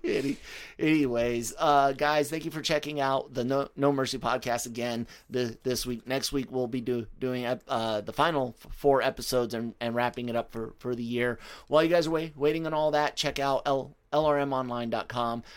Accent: American